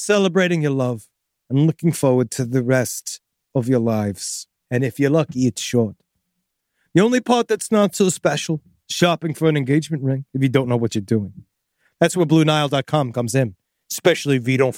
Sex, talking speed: male, 185 wpm